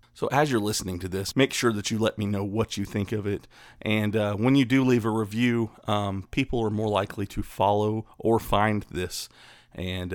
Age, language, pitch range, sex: 30-49, English, 100-115 Hz, male